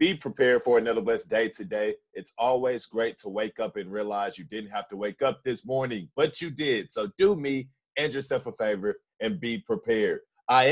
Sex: male